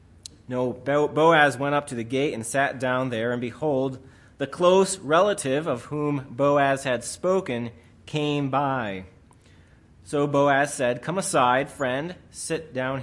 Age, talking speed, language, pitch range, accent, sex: 30-49, 145 wpm, English, 120-155 Hz, American, male